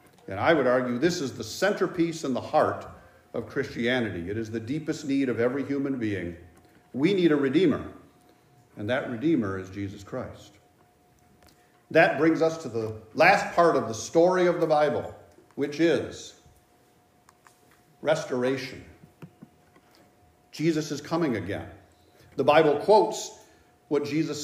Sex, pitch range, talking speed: male, 110-170 Hz, 140 wpm